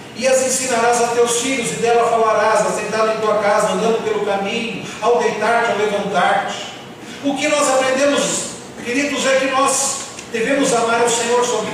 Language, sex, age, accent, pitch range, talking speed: Portuguese, male, 40-59, Brazilian, 180-255 Hz, 170 wpm